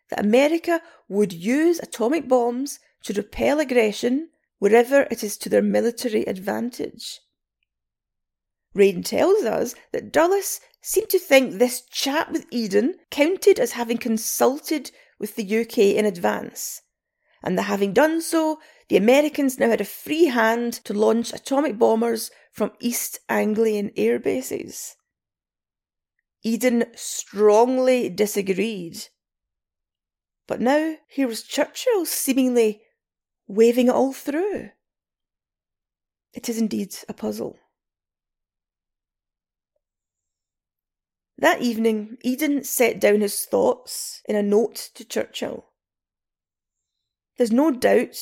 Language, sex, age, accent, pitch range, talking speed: English, female, 30-49, British, 205-280 Hz, 115 wpm